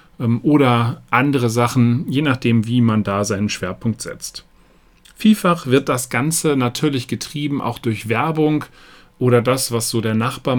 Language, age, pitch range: German, 40-59, 115-140 Hz